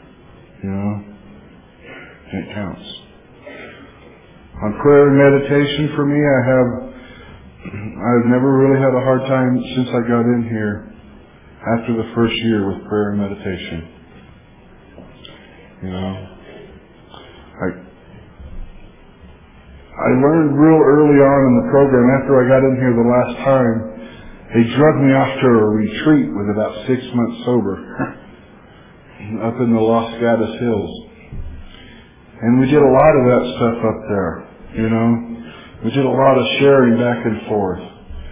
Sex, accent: male, American